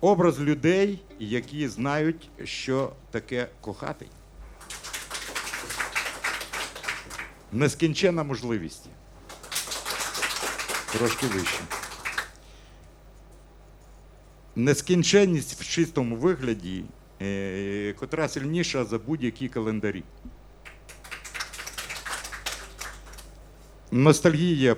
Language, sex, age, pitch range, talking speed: Russian, male, 50-69, 105-150 Hz, 55 wpm